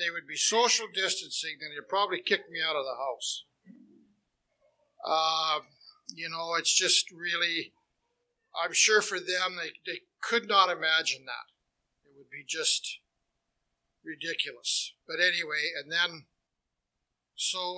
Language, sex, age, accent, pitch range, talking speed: English, male, 60-79, American, 165-220 Hz, 135 wpm